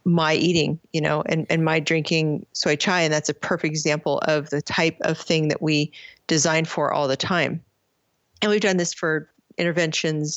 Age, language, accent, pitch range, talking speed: 40-59, English, American, 150-175 Hz, 190 wpm